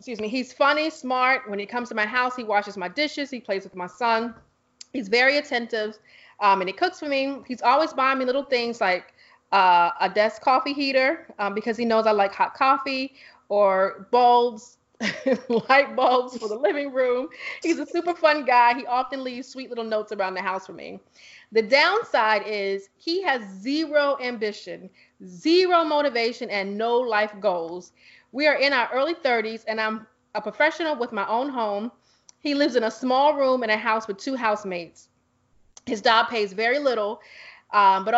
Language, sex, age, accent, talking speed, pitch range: English, female, 30-49, American, 185 wpm, 210-270 Hz